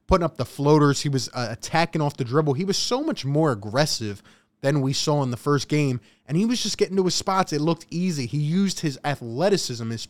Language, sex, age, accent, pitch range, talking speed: English, male, 20-39, American, 130-180 Hz, 240 wpm